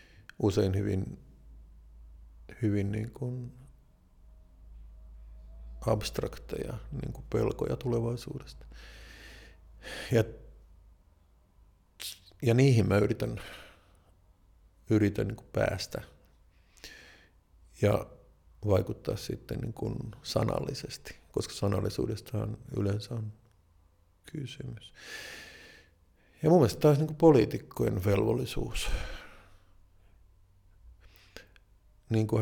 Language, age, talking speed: Finnish, 50-69, 60 wpm